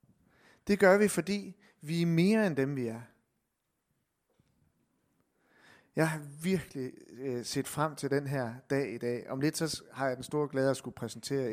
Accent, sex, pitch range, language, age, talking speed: native, male, 135-185 Hz, Danish, 30-49, 175 wpm